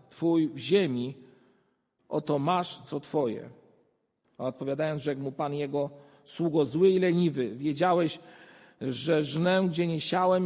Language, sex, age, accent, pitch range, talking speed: Polish, male, 50-69, native, 135-175 Hz, 130 wpm